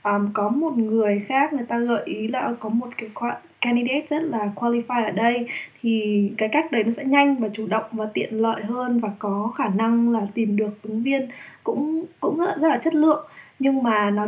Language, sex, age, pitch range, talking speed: Vietnamese, female, 10-29, 215-270 Hz, 220 wpm